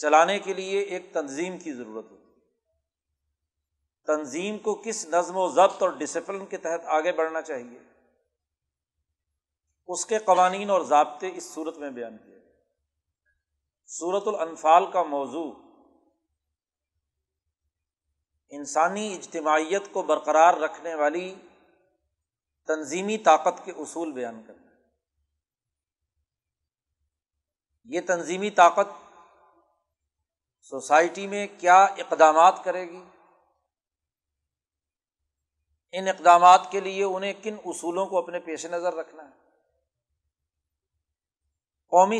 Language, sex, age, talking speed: Urdu, male, 50-69, 100 wpm